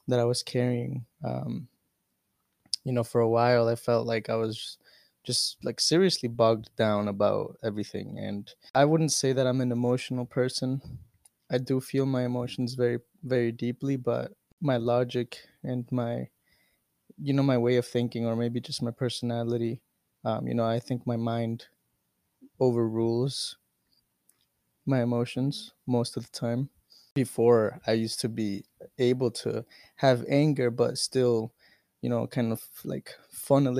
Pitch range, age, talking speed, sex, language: 115-125 Hz, 20-39, 155 wpm, male, English